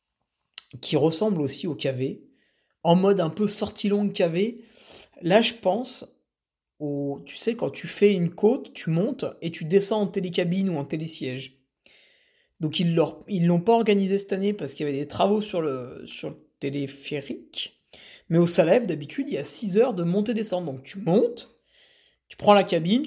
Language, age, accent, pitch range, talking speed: French, 50-69, French, 160-230 Hz, 185 wpm